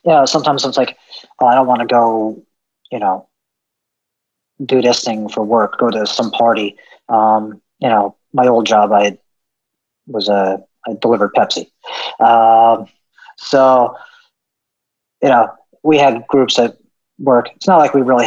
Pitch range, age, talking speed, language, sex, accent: 105-125 Hz, 40-59, 160 wpm, English, male, American